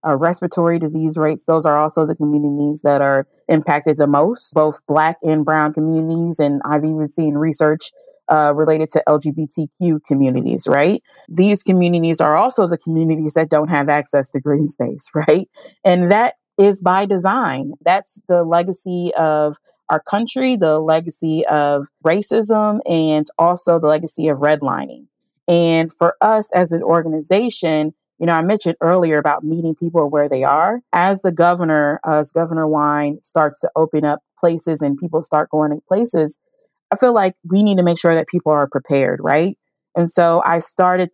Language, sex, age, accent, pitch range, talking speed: English, female, 30-49, American, 150-175 Hz, 170 wpm